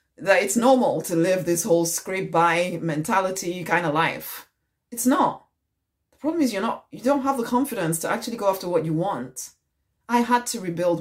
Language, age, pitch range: English, 30-49, 155-190 Hz